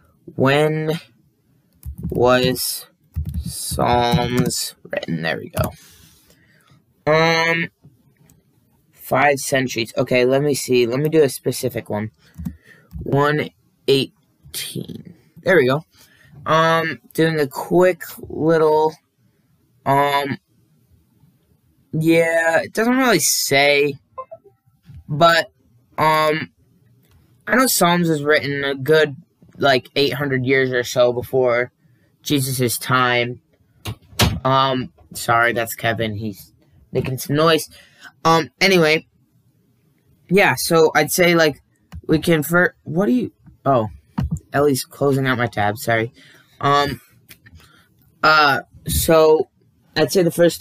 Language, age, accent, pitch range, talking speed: English, 20-39, American, 125-155 Hz, 105 wpm